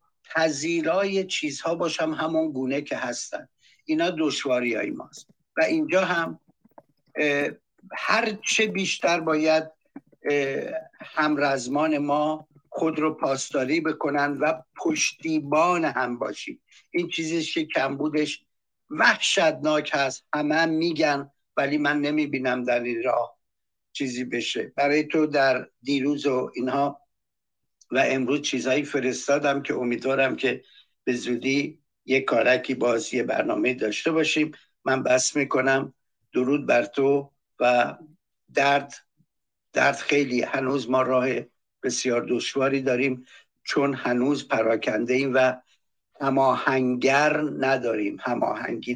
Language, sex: Persian, male